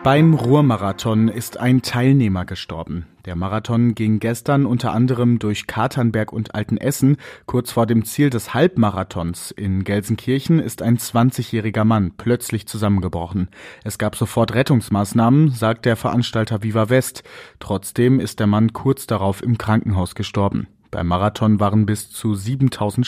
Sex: male